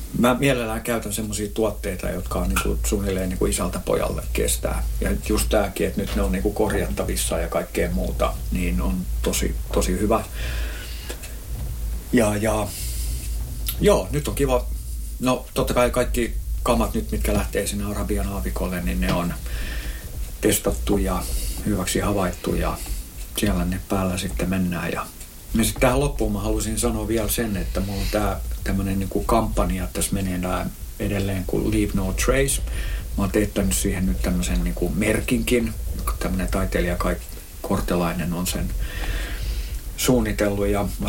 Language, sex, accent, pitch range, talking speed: Finnish, male, native, 90-105 Hz, 145 wpm